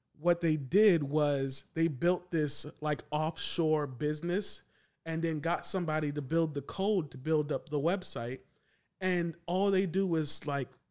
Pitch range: 145-185 Hz